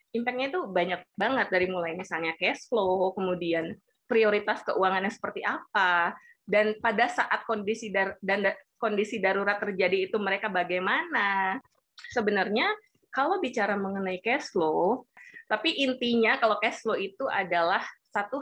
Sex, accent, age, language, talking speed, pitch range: female, native, 20-39, Indonesian, 135 wpm, 195-270 Hz